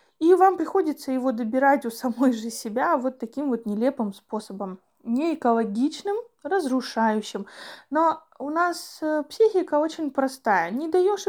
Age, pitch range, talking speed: 20-39, 230-310 Hz, 130 wpm